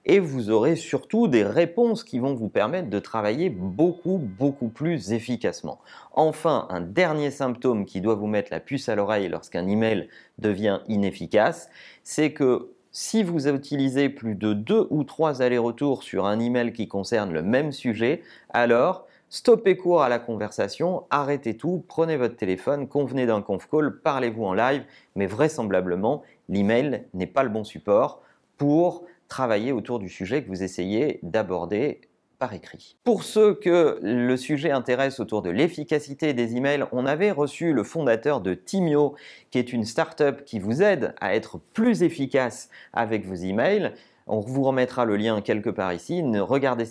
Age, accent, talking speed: 30-49, French, 165 wpm